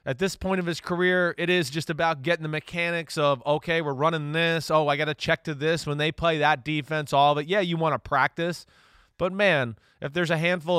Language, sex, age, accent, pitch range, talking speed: English, male, 30-49, American, 135-175 Hz, 245 wpm